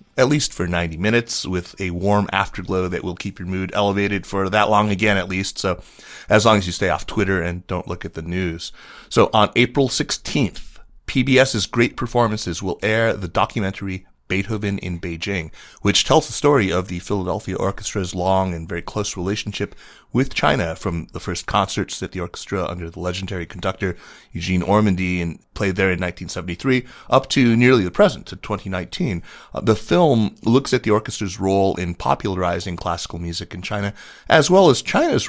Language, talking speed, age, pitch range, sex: English, 180 wpm, 30-49, 90-110 Hz, male